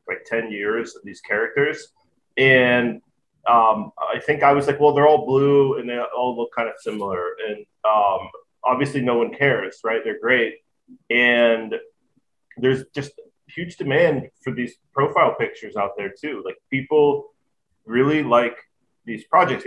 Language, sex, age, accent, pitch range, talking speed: English, male, 30-49, American, 115-150 Hz, 155 wpm